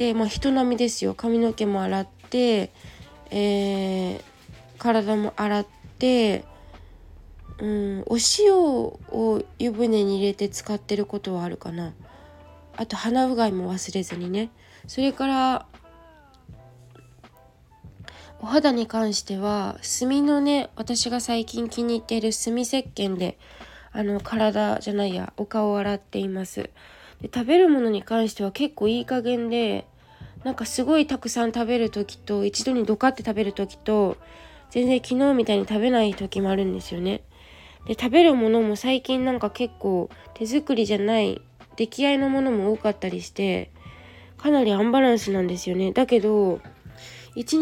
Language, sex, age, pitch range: Japanese, female, 20-39, 195-245 Hz